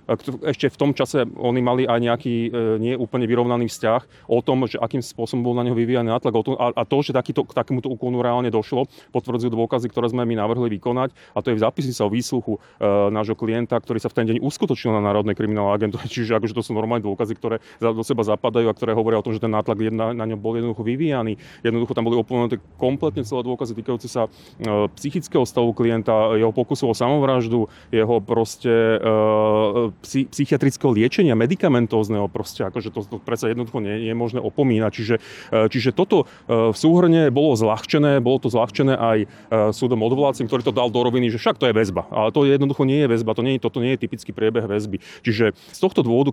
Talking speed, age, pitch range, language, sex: 200 wpm, 30-49, 110-125 Hz, Slovak, male